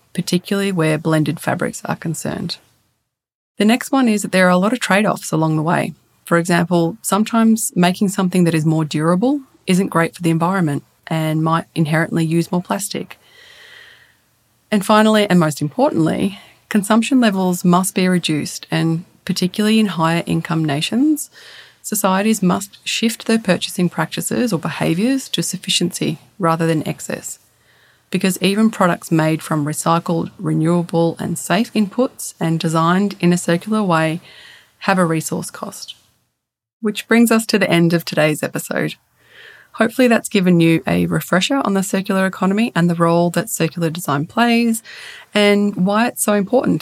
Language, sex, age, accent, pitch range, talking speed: English, female, 30-49, Australian, 165-210 Hz, 155 wpm